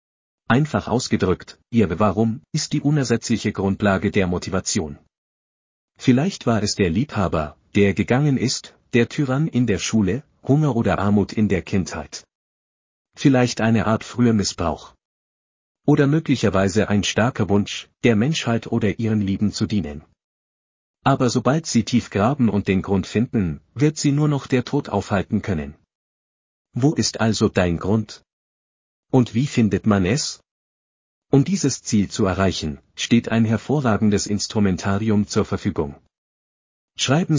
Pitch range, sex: 95-120 Hz, male